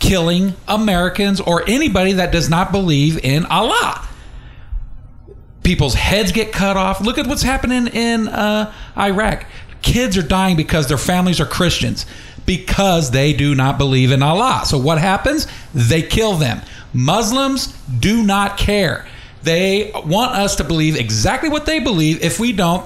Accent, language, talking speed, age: American, English, 155 wpm, 40-59